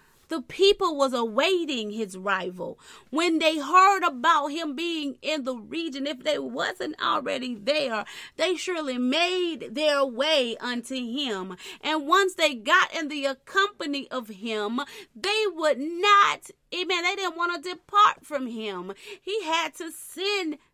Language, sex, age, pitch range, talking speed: English, female, 30-49, 260-335 Hz, 150 wpm